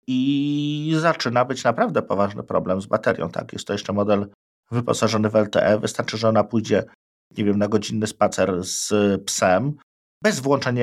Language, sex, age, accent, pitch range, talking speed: Polish, male, 50-69, native, 105-130 Hz, 160 wpm